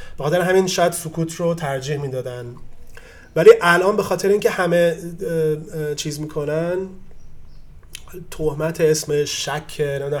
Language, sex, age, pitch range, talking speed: Persian, male, 30-49, 145-165 Hz, 110 wpm